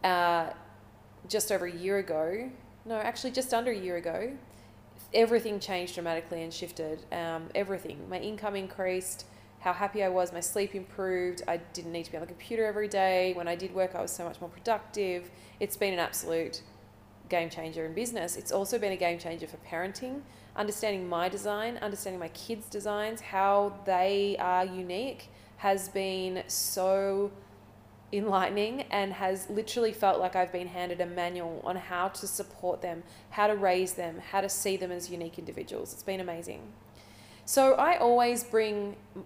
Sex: female